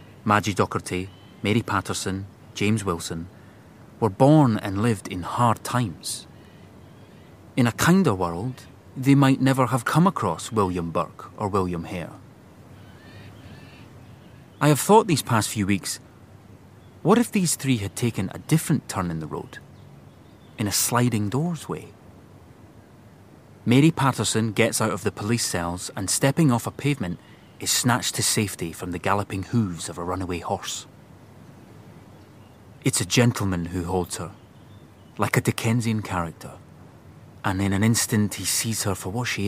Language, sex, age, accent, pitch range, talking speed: English, male, 30-49, British, 95-120 Hz, 145 wpm